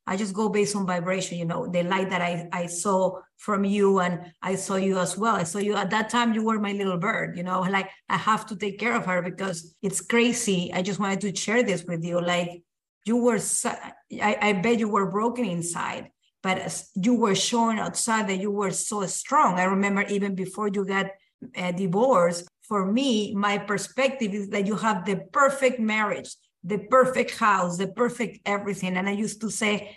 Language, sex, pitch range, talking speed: English, female, 190-230 Hz, 205 wpm